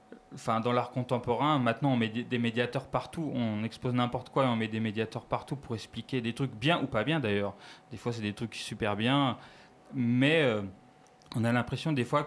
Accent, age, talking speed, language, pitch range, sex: French, 30-49, 210 wpm, French, 110-135 Hz, male